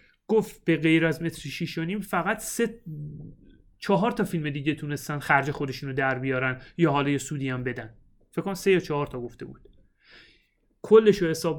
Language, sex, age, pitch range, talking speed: Persian, male, 30-49, 135-190 Hz, 185 wpm